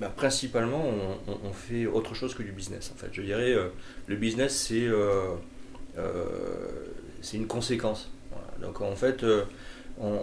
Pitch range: 95-115 Hz